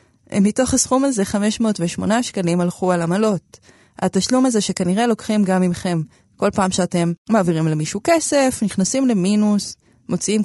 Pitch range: 175-255 Hz